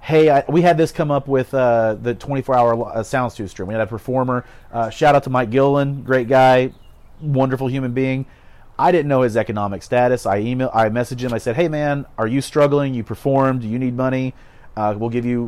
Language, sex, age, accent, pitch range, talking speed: English, male, 30-49, American, 110-130 Hz, 220 wpm